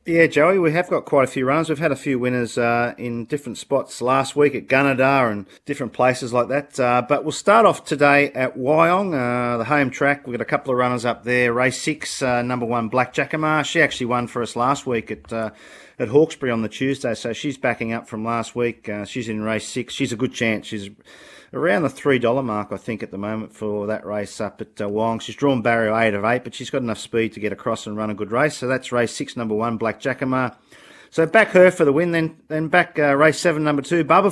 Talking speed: 250 wpm